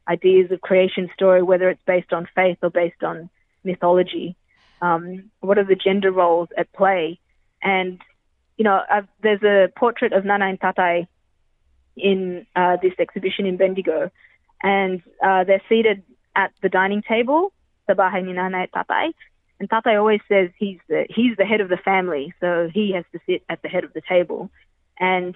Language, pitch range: Filipino, 185-220 Hz